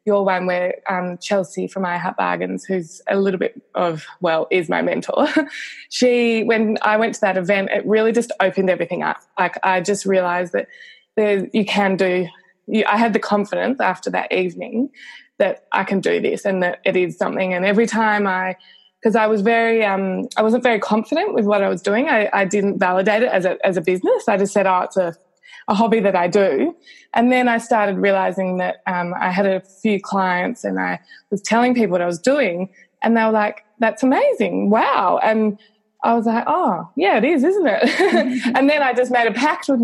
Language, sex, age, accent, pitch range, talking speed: English, female, 20-39, Australian, 190-245 Hz, 215 wpm